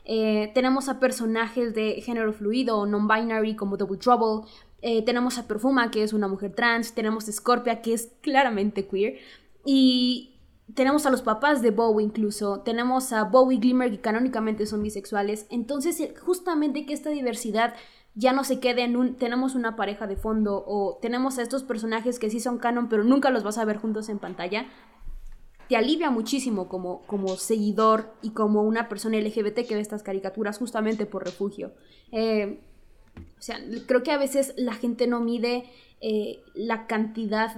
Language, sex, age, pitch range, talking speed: Spanish, female, 20-39, 210-245 Hz, 175 wpm